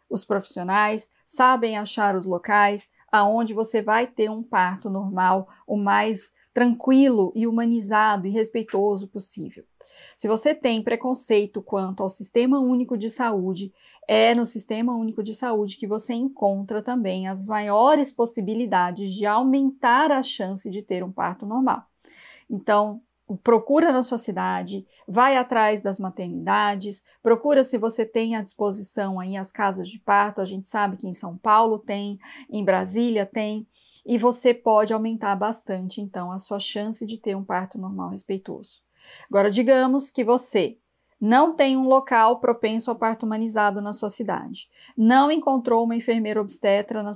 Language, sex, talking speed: Portuguese, female, 150 wpm